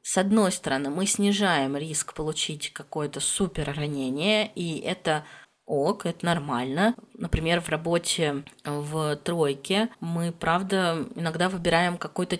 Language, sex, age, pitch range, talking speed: Russian, female, 20-39, 155-195 Hz, 120 wpm